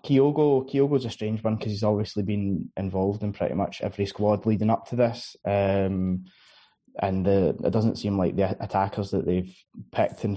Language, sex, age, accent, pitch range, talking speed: English, male, 20-39, British, 100-115 Hz, 180 wpm